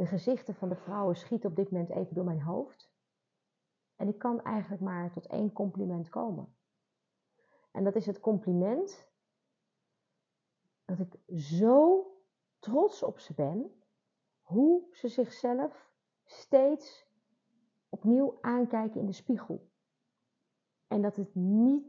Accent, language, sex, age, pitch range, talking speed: Dutch, Dutch, female, 40-59, 195-255 Hz, 130 wpm